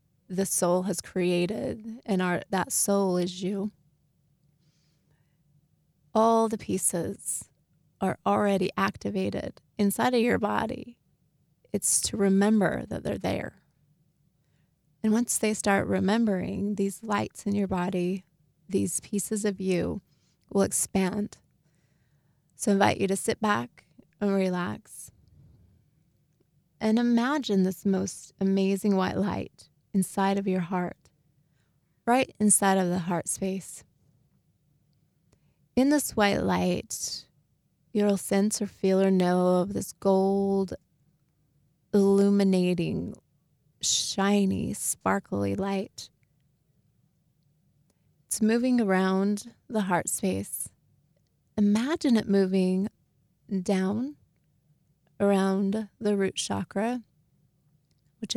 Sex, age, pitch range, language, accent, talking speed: female, 20-39, 150-200 Hz, English, American, 105 wpm